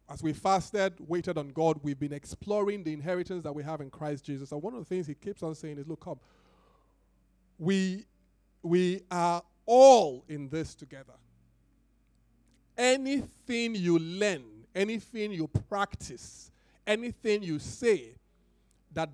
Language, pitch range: English, 120-180 Hz